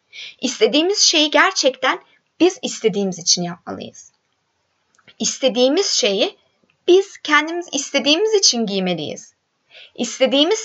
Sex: female